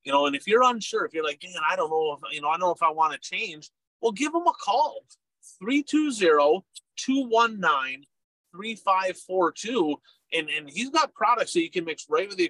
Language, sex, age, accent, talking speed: English, male, 30-49, American, 230 wpm